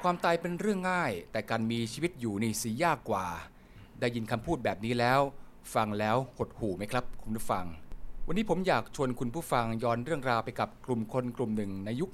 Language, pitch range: Thai, 110-135 Hz